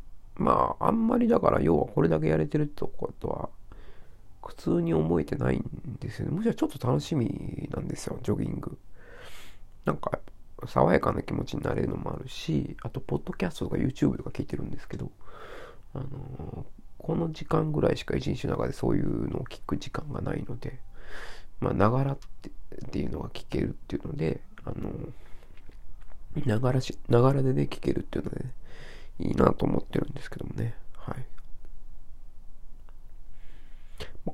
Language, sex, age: Japanese, male, 40-59